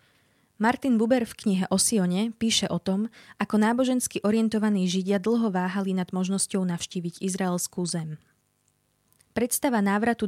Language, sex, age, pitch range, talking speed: Slovak, female, 20-39, 180-210 Hz, 130 wpm